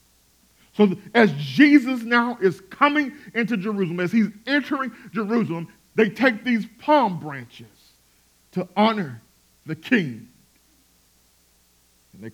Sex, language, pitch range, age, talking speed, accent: male, English, 160-230 Hz, 50-69, 110 wpm, American